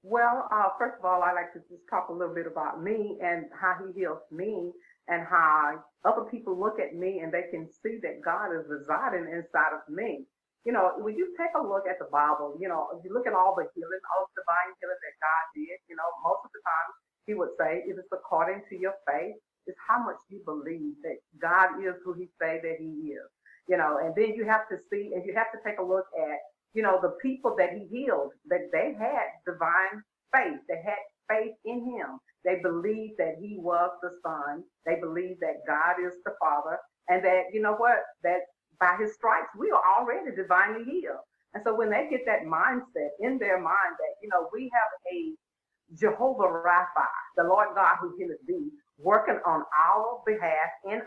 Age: 50-69